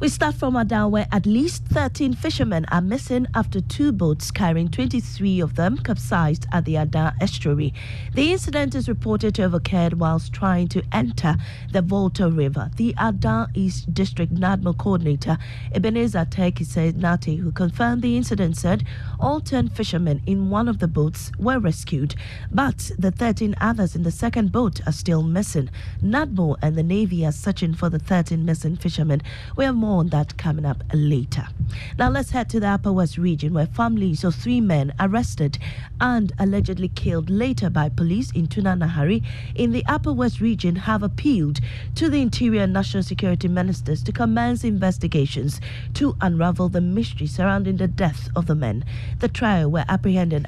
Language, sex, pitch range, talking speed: English, female, 125-185 Hz, 170 wpm